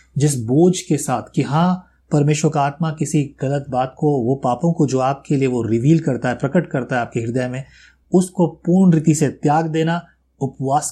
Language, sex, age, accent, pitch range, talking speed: Hindi, male, 30-49, native, 125-160 Hz, 200 wpm